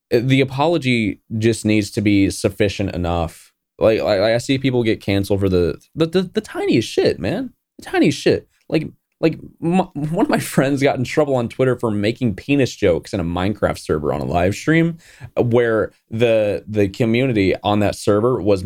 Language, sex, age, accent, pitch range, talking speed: English, male, 20-39, American, 95-130 Hz, 185 wpm